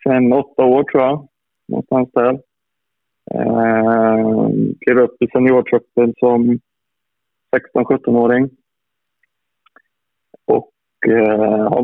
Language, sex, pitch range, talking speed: Swedish, male, 110-130 Hz, 80 wpm